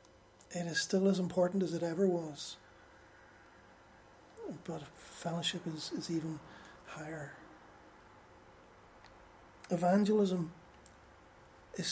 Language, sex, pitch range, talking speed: English, male, 165-190 Hz, 85 wpm